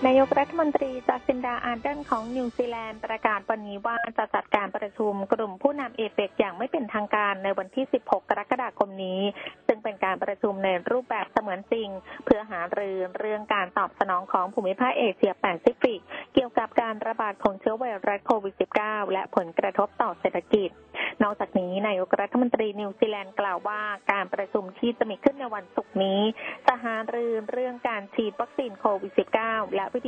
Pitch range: 195-245 Hz